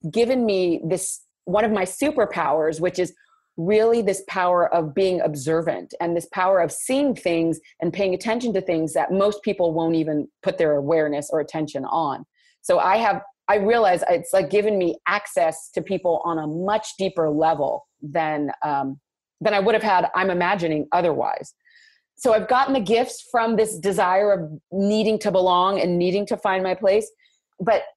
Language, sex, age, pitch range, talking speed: English, female, 30-49, 170-220 Hz, 180 wpm